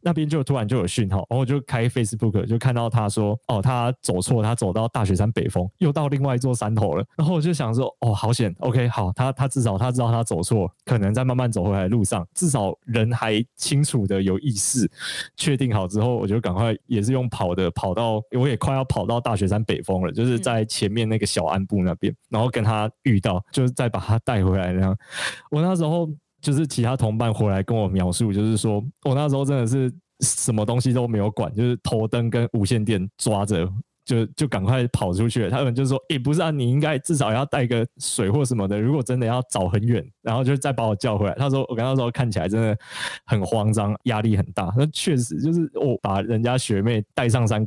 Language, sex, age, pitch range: Chinese, male, 20-39, 105-135 Hz